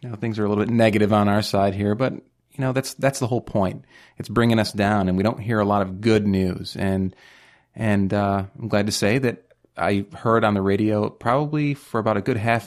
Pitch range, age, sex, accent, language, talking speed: 95-115 Hz, 30-49, male, American, English, 240 wpm